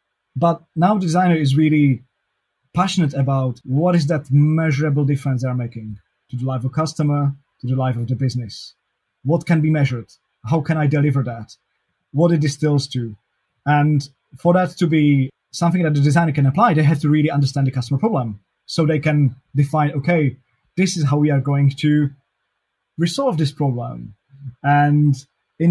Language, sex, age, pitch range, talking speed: English, male, 20-39, 130-155 Hz, 175 wpm